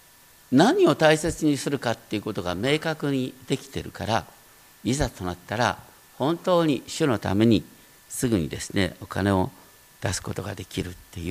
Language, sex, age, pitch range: Japanese, male, 50-69, 100-160 Hz